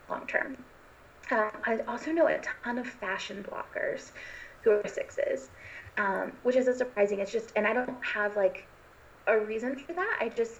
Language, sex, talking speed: English, female, 180 wpm